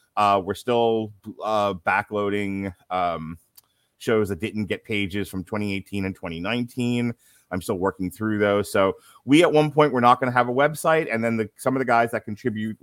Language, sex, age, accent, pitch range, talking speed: English, male, 30-49, American, 100-120 Hz, 190 wpm